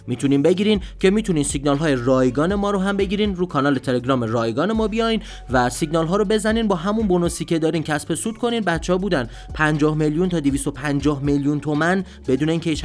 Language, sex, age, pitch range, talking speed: Persian, male, 30-49, 130-185 Hz, 195 wpm